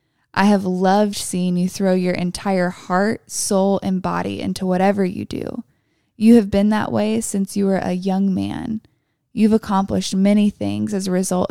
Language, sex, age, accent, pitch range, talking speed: English, female, 20-39, American, 190-220 Hz, 175 wpm